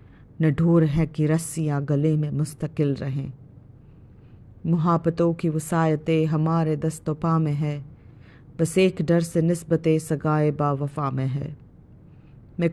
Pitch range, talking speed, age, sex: 130-165 Hz, 125 wpm, 30-49, female